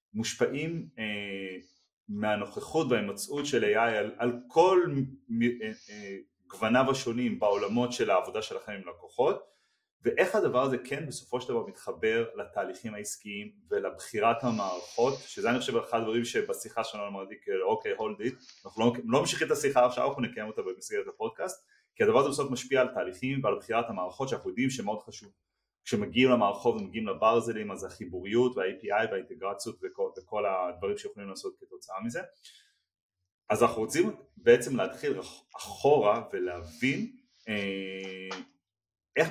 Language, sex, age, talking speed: Hebrew, male, 30-49, 135 wpm